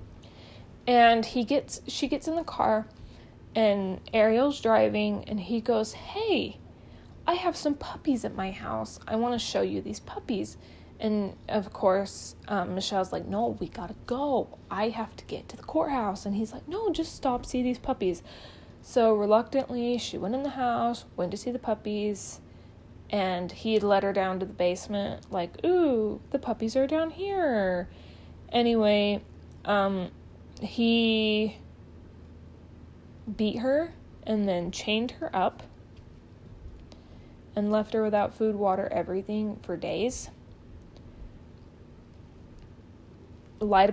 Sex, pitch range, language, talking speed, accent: female, 185-235 Hz, English, 140 wpm, American